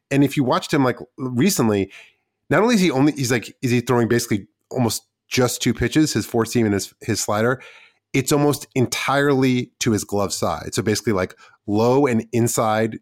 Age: 30-49